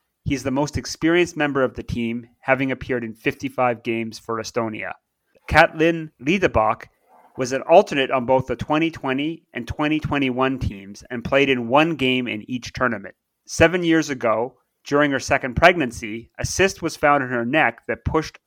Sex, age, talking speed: male, 30-49, 165 wpm